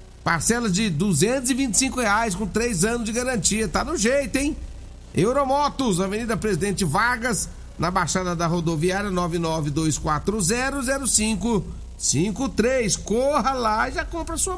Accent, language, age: Brazilian, Portuguese, 50-69